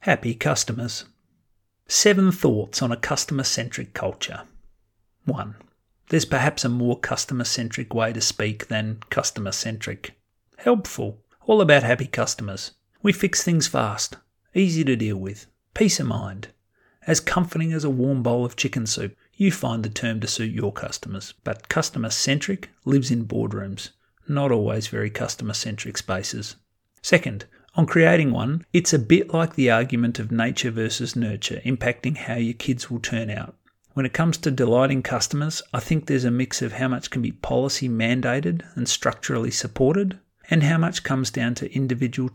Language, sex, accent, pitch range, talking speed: English, male, Australian, 110-140 Hz, 155 wpm